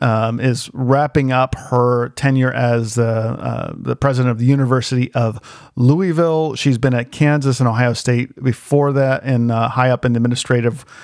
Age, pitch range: 40-59, 125-140 Hz